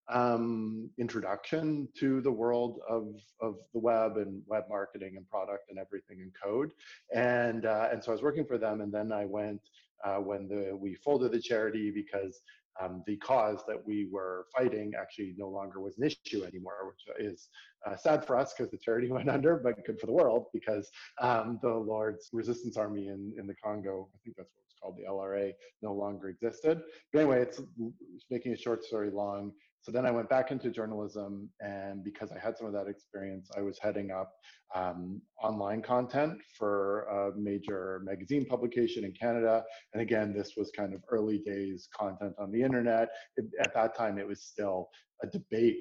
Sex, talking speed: male, 195 wpm